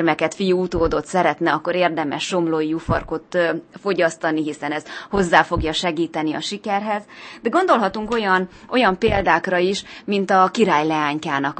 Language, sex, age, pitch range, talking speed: Hungarian, female, 20-39, 165-210 Hz, 135 wpm